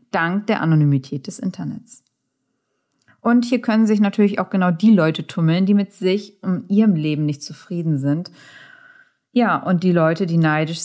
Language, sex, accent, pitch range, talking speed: German, female, German, 160-210 Hz, 165 wpm